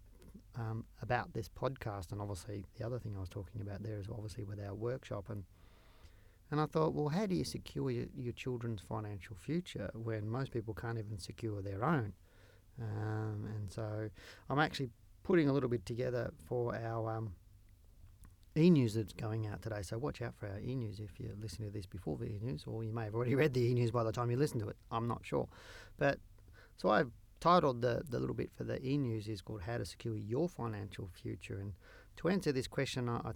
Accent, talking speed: Australian, 215 wpm